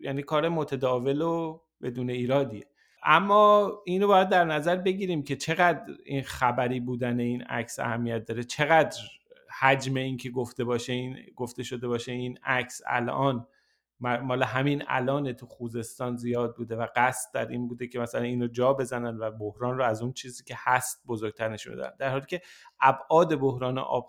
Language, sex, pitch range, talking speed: Persian, male, 120-155 Hz, 165 wpm